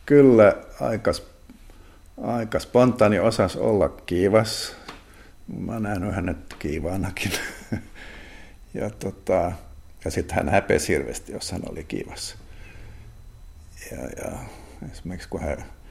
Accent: native